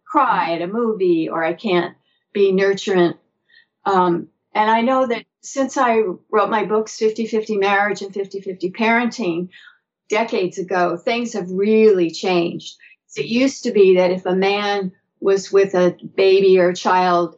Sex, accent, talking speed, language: female, American, 160 wpm, English